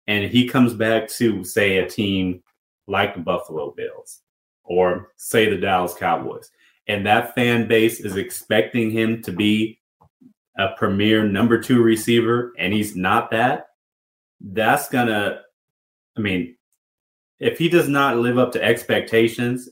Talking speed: 150 wpm